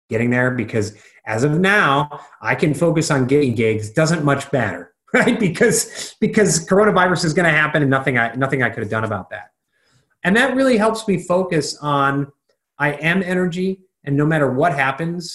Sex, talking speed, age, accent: male, 185 wpm, 30-49, American